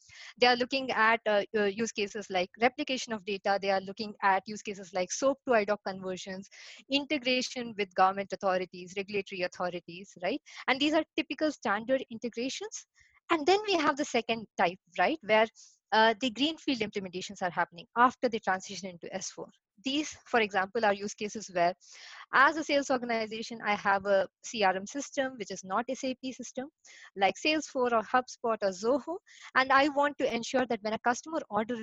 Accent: Indian